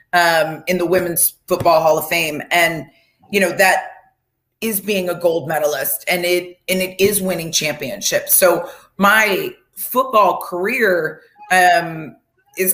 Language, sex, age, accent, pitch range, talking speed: English, female, 30-49, American, 175-225 Hz, 140 wpm